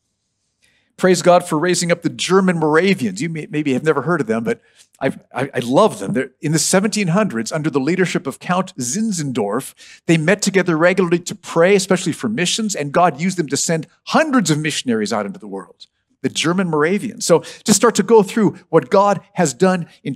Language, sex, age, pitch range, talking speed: English, male, 50-69, 155-215 Hz, 195 wpm